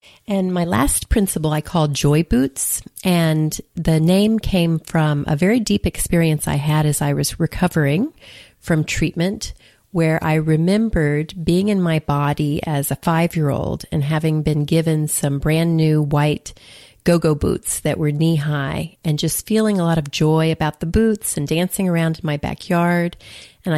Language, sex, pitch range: English, female, 150-180 Hz